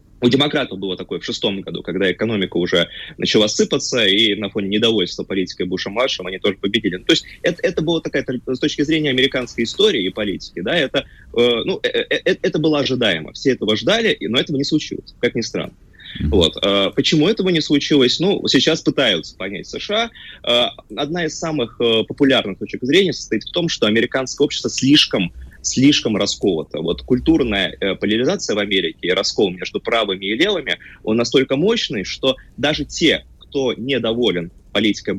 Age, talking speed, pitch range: 20-39, 170 wpm, 105-145 Hz